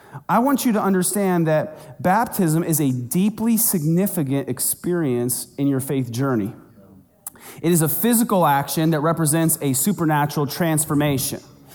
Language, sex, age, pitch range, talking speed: English, male, 30-49, 145-185 Hz, 135 wpm